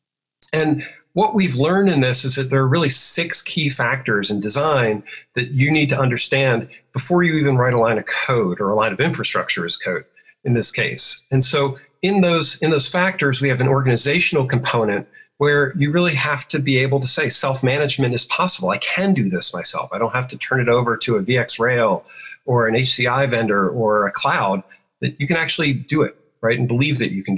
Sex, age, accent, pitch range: male, 40-59, American, 115-145 Hz